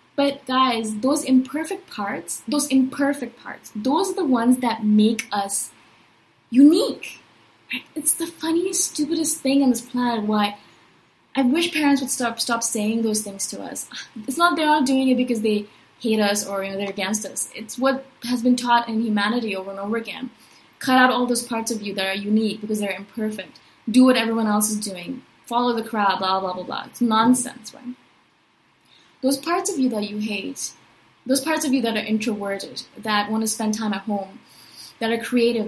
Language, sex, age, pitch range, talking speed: English, female, 20-39, 210-265 Hz, 195 wpm